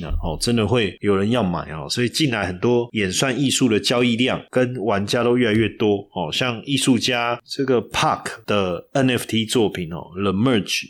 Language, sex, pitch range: Chinese, male, 100-130 Hz